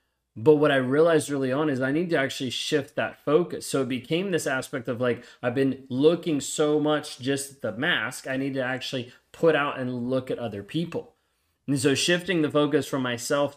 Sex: male